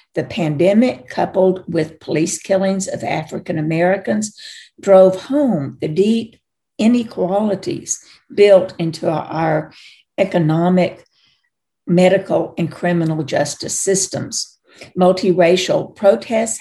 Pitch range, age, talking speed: 170-230 Hz, 60-79, 85 wpm